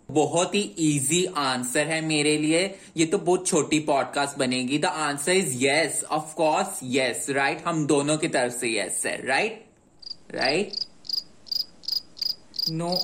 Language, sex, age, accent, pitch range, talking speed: Hindi, male, 20-39, native, 145-185 Hz, 140 wpm